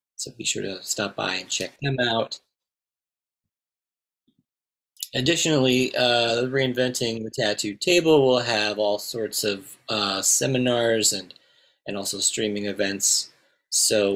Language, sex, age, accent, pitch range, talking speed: English, male, 30-49, American, 105-125 Hz, 125 wpm